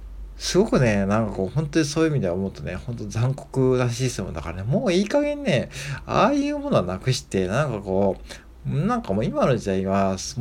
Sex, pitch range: male, 95-140 Hz